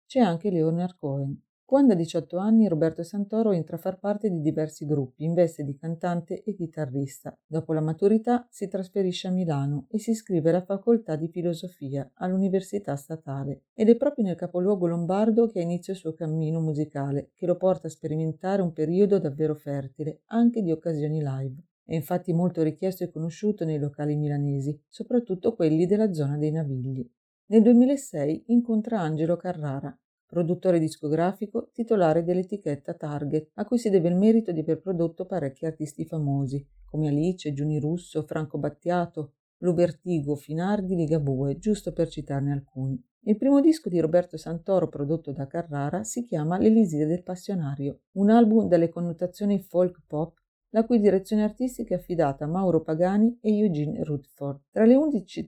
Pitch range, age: 155-200 Hz, 40-59